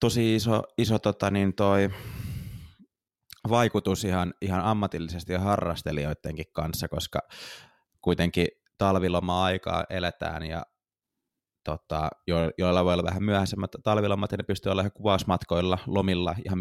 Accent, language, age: native, Finnish, 20-39